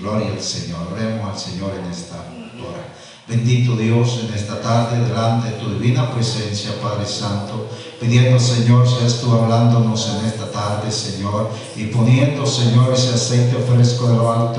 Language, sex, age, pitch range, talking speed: Spanish, male, 50-69, 110-125 Hz, 175 wpm